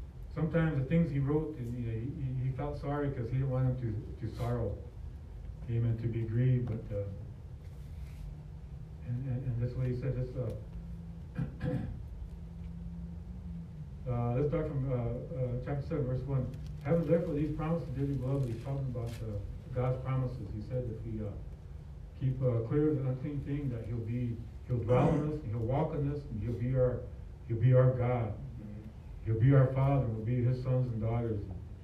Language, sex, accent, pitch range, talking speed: English, male, American, 110-140 Hz, 185 wpm